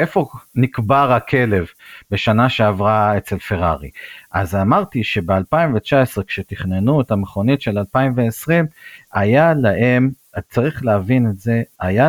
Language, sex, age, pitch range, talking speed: Hebrew, male, 50-69, 105-140 Hz, 115 wpm